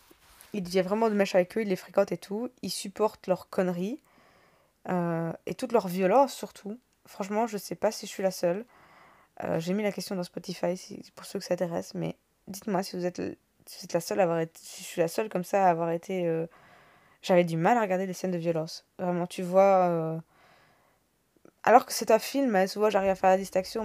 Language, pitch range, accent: French, 175-200 Hz, French